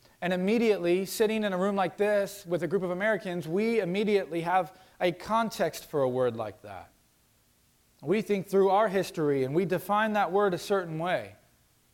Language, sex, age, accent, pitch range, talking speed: English, male, 40-59, American, 155-205 Hz, 180 wpm